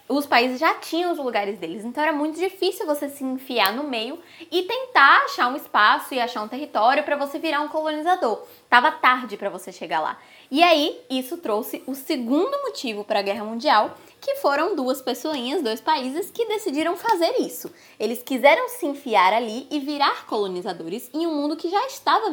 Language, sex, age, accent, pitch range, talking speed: Portuguese, female, 10-29, Brazilian, 225-330 Hz, 190 wpm